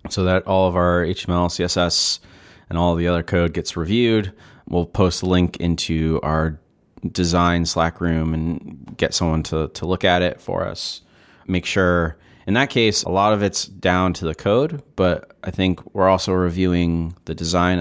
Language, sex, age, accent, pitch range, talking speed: English, male, 30-49, American, 85-105 Hz, 185 wpm